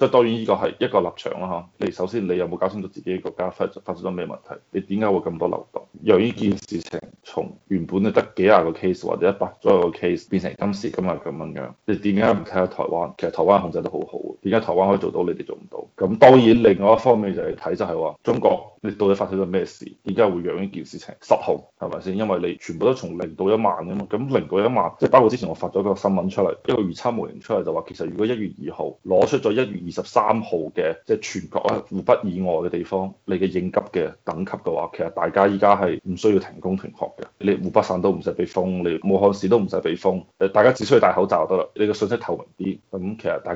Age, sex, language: 20-39, male, Chinese